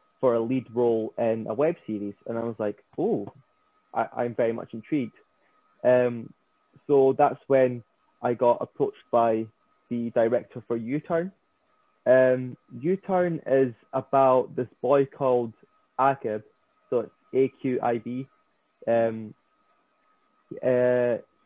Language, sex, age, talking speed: English, male, 20-39, 120 wpm